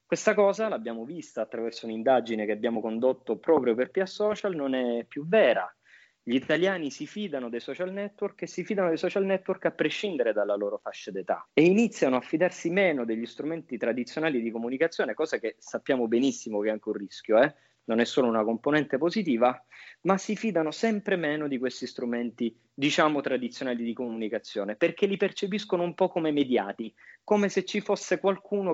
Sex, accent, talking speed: male, native, 180 wpm